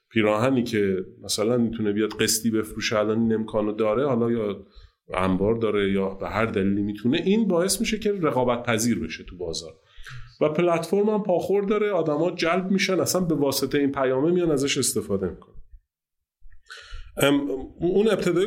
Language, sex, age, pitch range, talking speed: Persian, male, 30-49, 120-175 Hz, 160 wpm